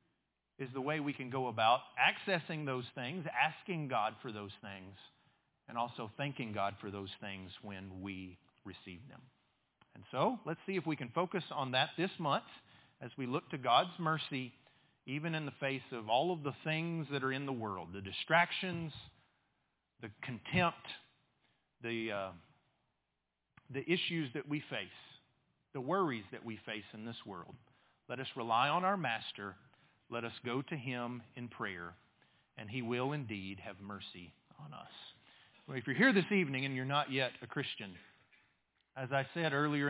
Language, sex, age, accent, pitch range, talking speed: English, male, 40-59, American, 110-145 Hz, 170 wpm